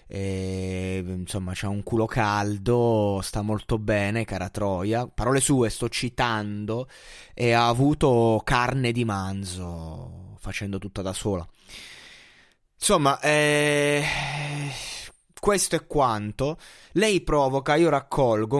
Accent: native